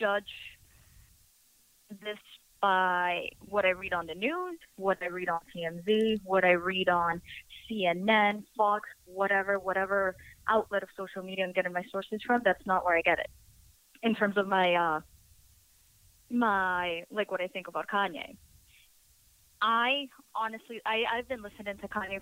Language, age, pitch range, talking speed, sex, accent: English, 20-39, 180-220 Hz, 150 wpm, female, American